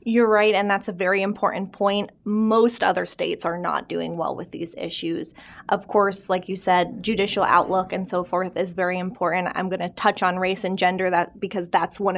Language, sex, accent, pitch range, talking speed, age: English, female, American, 180-215 Hz, 210 wpm, 20-39